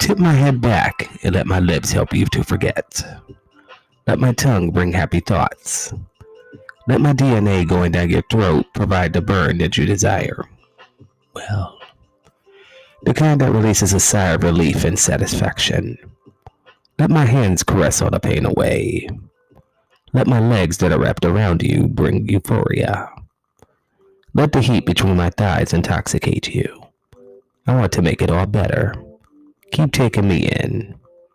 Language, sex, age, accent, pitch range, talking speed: English, male, 30-49, American, 90-130 Hz, 150 wpm